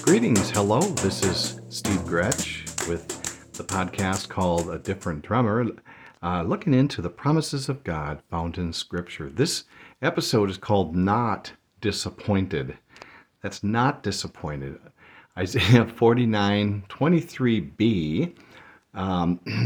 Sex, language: male, English